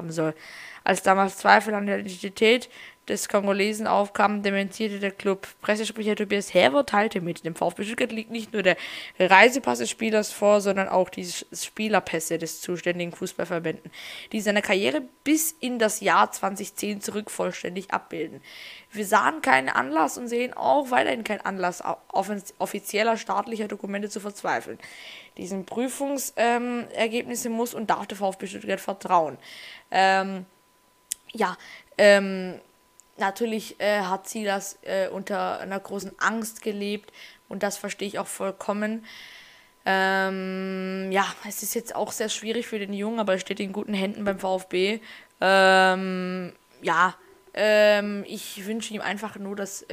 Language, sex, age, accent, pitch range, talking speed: German, female, 20-39, German, 190-220 Hz, 145 wpm